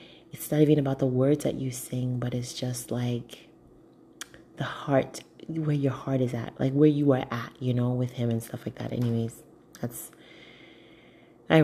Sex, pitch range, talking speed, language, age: female, 120-140 Hz, 185 wpm, English, 30-49